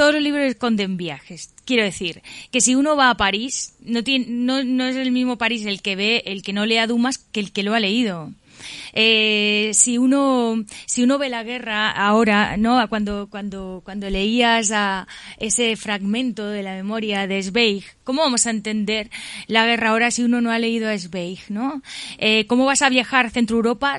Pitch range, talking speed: 195-235 Hz, 200 wpm